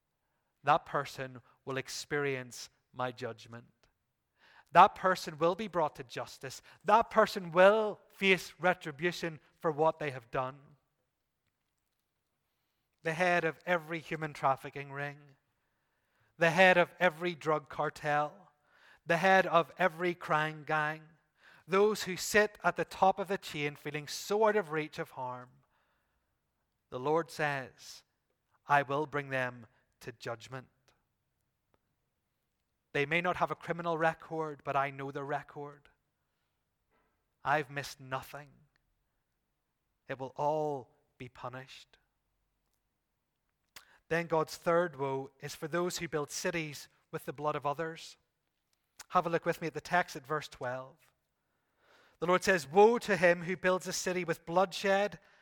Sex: male